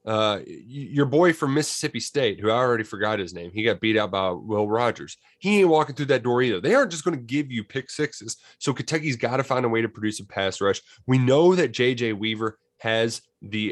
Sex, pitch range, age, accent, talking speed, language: male, 110-145 Hz, 20-39, American, 235 wpm, English